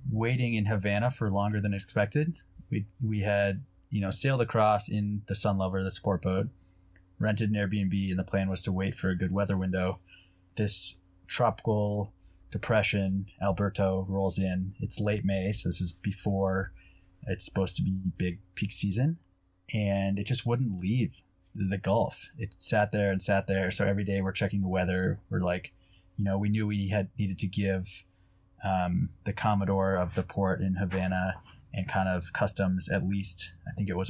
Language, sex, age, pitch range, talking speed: English, male, 20-39, 95-105 Hz, 185 wpm